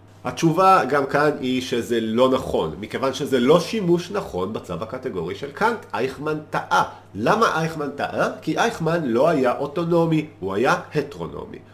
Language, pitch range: Hebrew, 110-155 Hz